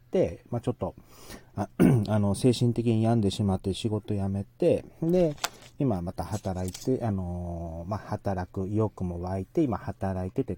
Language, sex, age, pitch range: Japanese, male, 40-59, 100-135 Hz